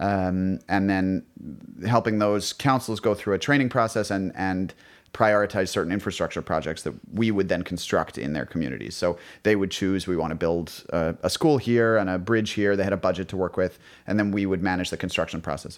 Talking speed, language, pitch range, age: 215 wpm, English, 90-105 Hz, 30-49